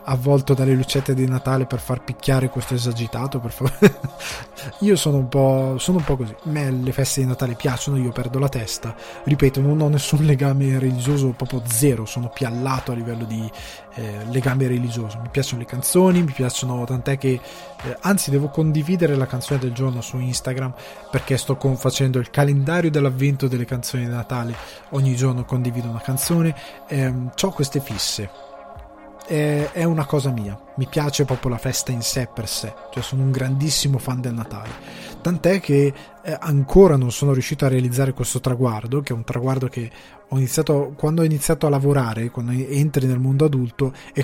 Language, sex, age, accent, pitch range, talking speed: Italian, male, 20-39, native, 125-145 Hz, 180 wpm